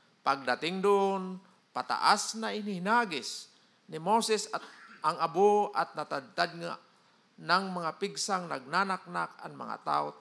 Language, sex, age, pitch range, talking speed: Filipino, male, 50-69, 165-220 Hz, 110 wpm